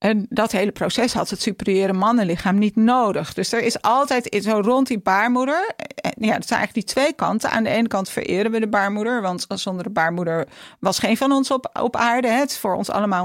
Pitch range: 185-240 Hz